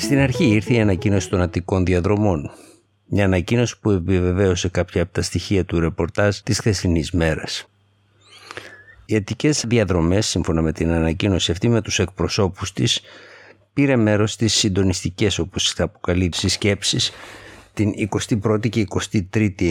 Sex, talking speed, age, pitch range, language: male, 135 wpm, 60-79, 90-110 Hz, Greek